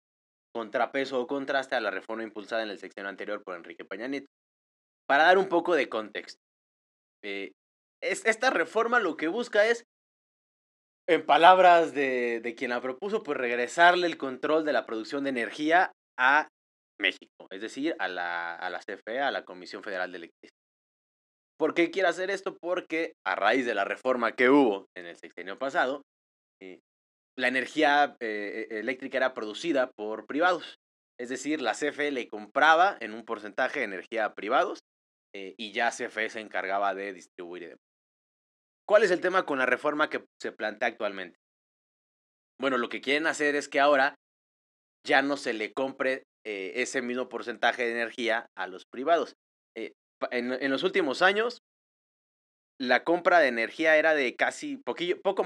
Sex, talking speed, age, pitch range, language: male, 165 wpm, 20-39, 110-155 Hz, Spanish